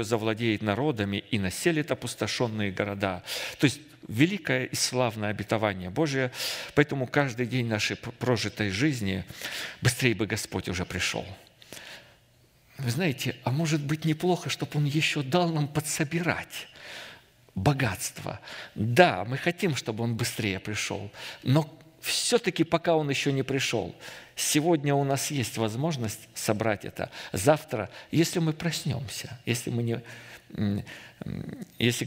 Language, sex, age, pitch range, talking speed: Russian, male, 50-69, 110-150 Hz, 120 wpm